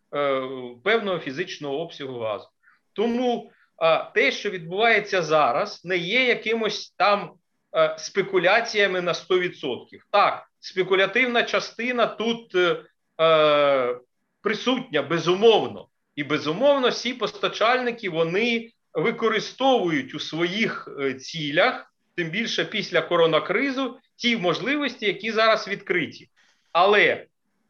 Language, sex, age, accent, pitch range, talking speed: Ukrainian, male, 40-59, native, 155-235 Hz, 90 wpm